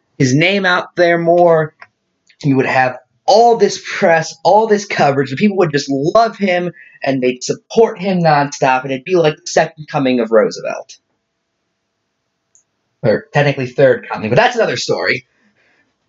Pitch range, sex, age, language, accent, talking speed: 140-195 Hz, male, 30-49, English, American, 155 wpm